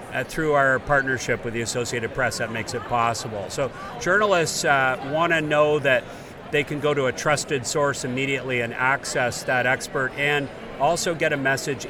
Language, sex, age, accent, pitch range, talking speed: English, male, 50-69, American, 130-150 Hz, 175 wpm